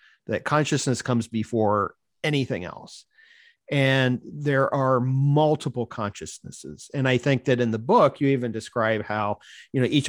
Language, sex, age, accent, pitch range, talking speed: English, male, 40-59, American, 105-140 Hz, 150 wpm